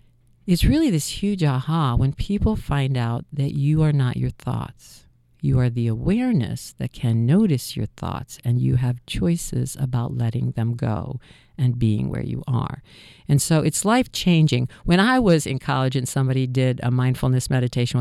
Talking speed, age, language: 175 wpm, 50-69, English